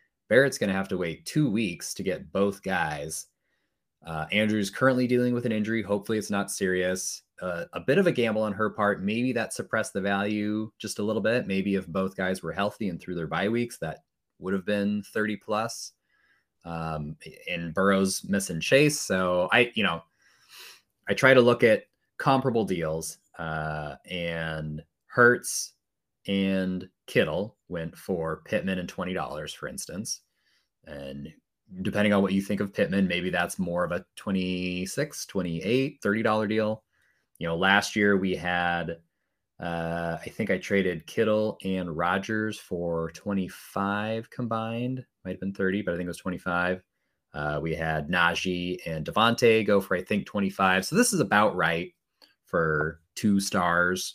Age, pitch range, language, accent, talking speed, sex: 20-39, 85-105 Hz, English, American, 165 wpm, male